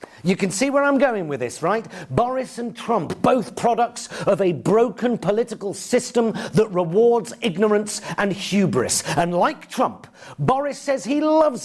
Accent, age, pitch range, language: British, 50-69, 195-245 Hz, German